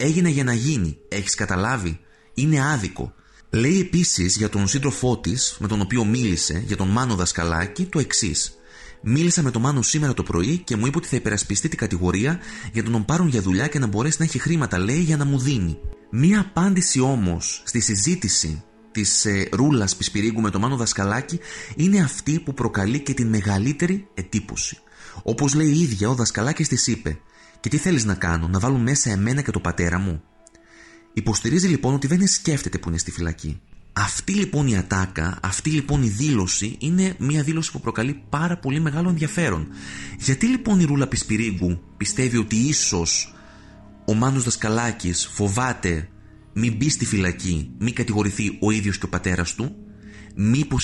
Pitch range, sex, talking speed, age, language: 95-140 Hz, male, 175 wpm, 30-49, Greek